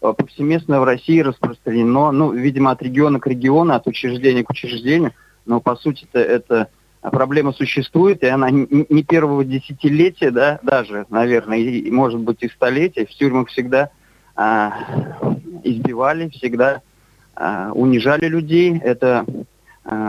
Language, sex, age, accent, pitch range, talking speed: Russian, male, 30-49, native, 125-150 Hz, 120 wpm